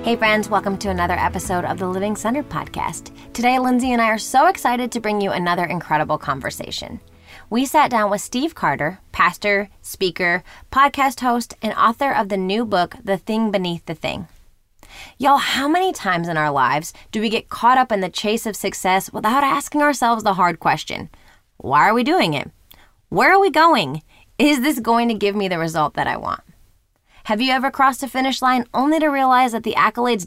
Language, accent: English, American